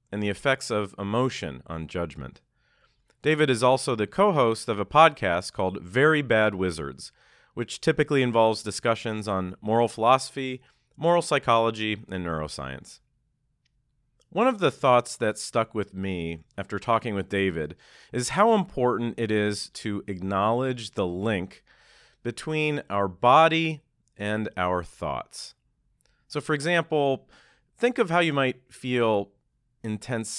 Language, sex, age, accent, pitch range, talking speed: English, male, 40-59, American, 100-145 Hz, 130 wpm